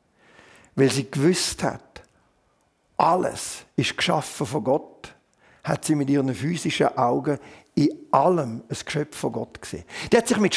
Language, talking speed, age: German, 150 wpm, 50-69